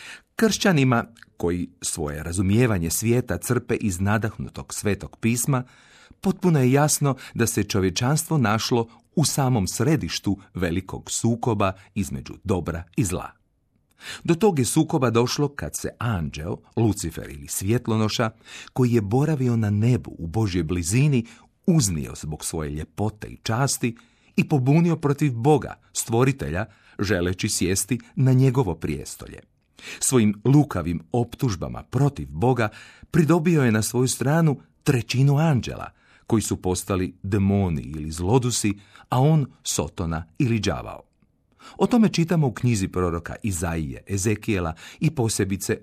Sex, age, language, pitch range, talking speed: male, 40-59, Croatian, 95-135 Hz, 125 wpm